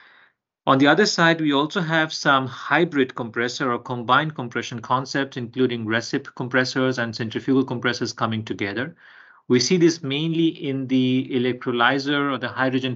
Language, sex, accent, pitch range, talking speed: English, male, Indian, 115-140 Hz, 150 wpm